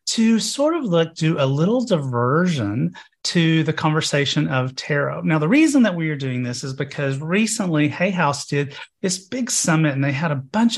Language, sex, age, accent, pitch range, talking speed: English, male, 30-49, American, 140-175 Hz, 195 wpm